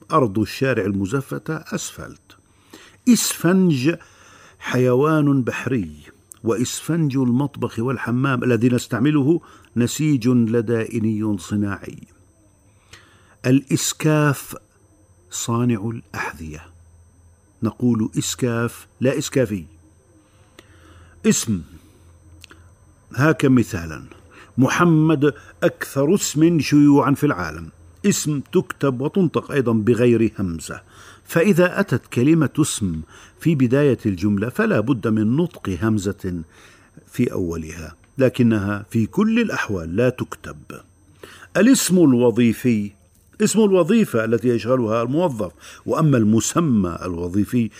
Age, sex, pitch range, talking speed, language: 50-69, male, 100-140 Hz, 85 wpm, Arabic